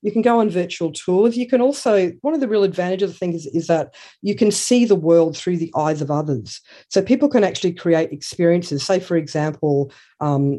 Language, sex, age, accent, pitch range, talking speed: English, female, 50-69, Australian, 140-165 Hz, 220 wpm